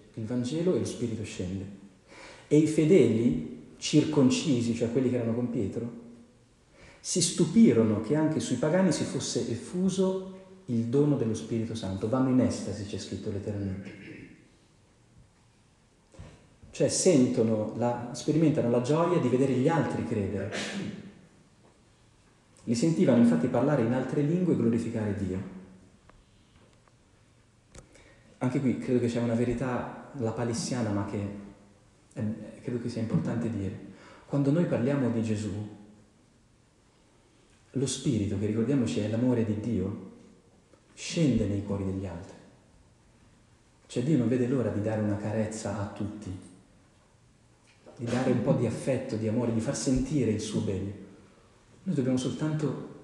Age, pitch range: 40-59, 105-130 Hz